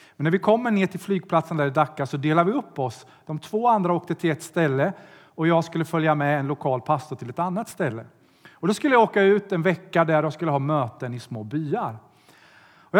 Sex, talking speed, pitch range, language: male, 235 wpm, 140-190 Hz, Swedish